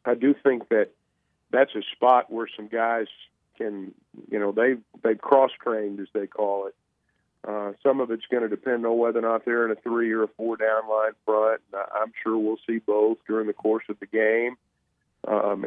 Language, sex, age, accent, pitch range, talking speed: English, male, 50-69, American, 105-125 Hz, 205 wpm